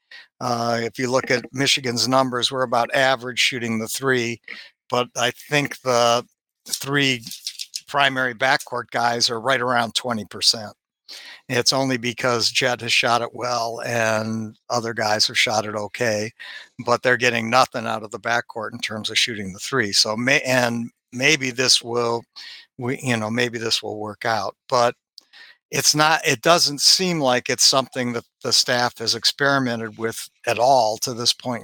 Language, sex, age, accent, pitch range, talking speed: English, male, 60-79, American, 115-130 Hz, 165 wpm